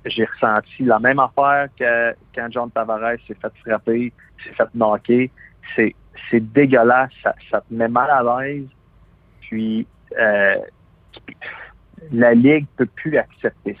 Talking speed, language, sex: 140 wpm, French, male